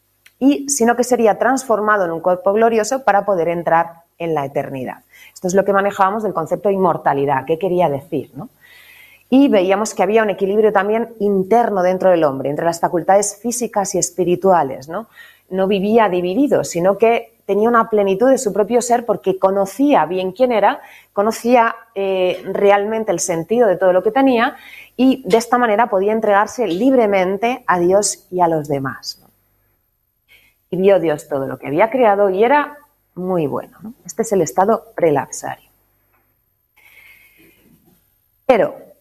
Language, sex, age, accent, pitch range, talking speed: Spanish, female, 30-49, Spanish, 175-225 Hz, 160 wpm